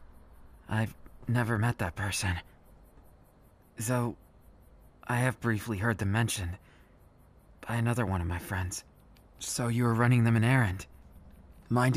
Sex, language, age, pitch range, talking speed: male, English, 20-39, 85-120 Hz, 135 wpm